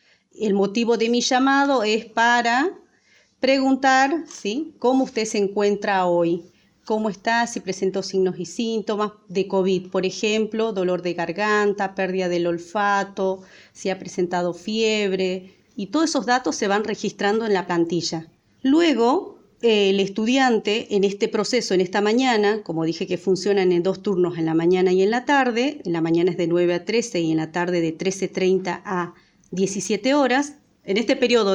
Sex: female